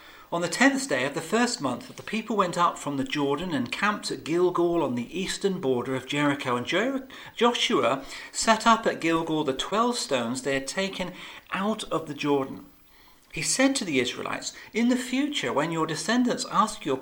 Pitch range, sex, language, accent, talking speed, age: 140-215 Hz, male, English, British, 190 wpm, 40-59